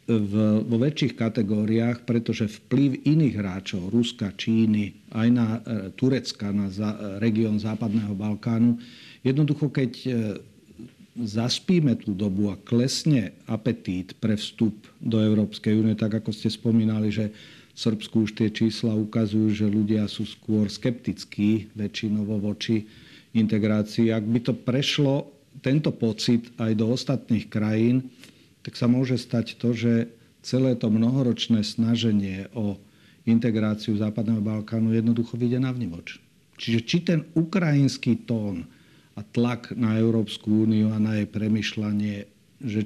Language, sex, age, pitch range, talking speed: Slovak, male, 50-69, 105-120 Hz, 135 wpm